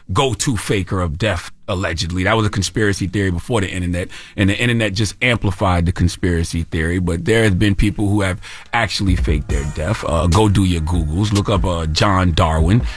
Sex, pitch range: male, 90-110 Hz